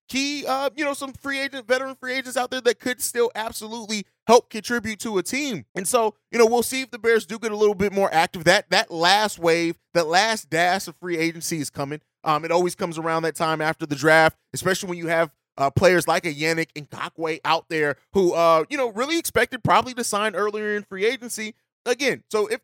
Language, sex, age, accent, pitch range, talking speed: English, male, 30-49, American, 165-225 Hz, 235 wpm